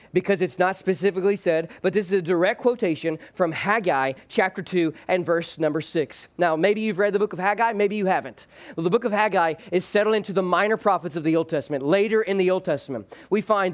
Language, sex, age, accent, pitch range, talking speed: English, male, 40-59, American, 180-225 Hz, 225 wpm